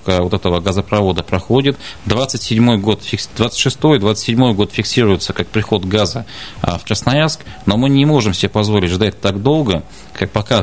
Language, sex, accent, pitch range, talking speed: Russian, male, native, 95-120 Hz, 140 wpm